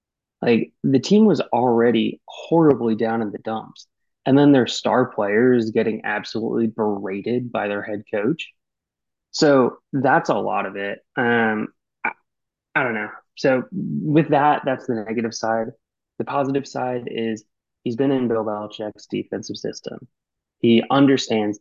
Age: 20-39